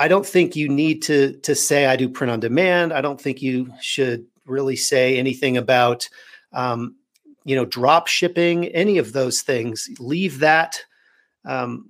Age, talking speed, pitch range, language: 40-59, 170 wpm, 125-160 Hz, English